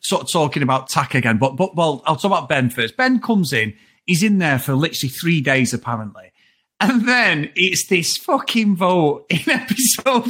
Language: English